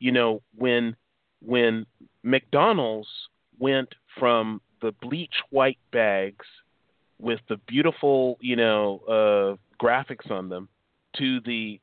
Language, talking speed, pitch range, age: English, 110 wpm, 115-140 Hz, 40-59